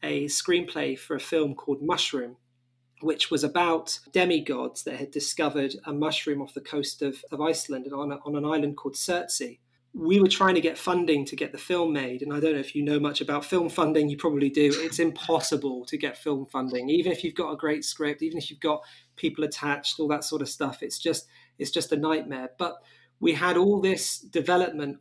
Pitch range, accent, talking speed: 145-160 Hz, British, 210 wpm